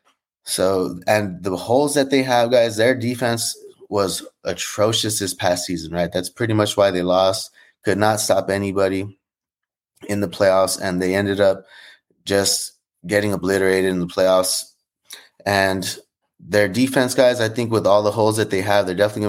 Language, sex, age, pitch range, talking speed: English, male, 20-39, 95-115 Hz, 170 wpm